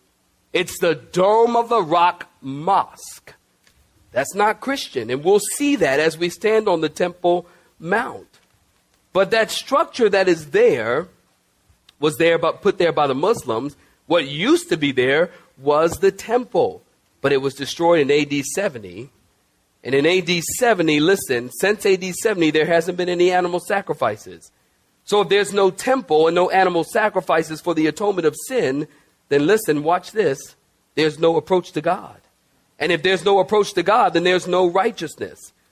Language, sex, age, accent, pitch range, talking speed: English, male, 40-59, American, 155-205 Hz, 165 wpm